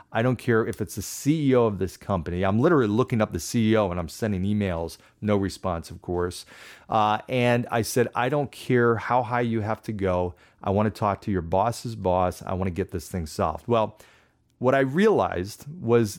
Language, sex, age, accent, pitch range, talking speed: English, male, 30-49, American, 100-125 Hz, 205 wpm